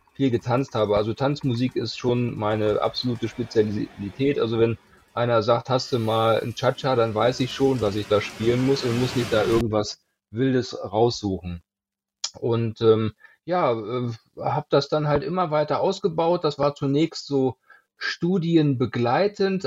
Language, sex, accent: German, male, German